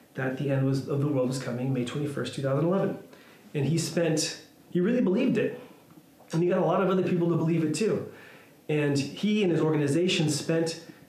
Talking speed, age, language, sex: 195 wpm, 30-49, English, male